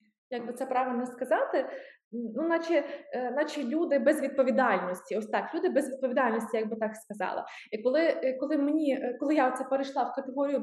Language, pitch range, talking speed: Ukrainian, 245-295 Hz, 165 wpm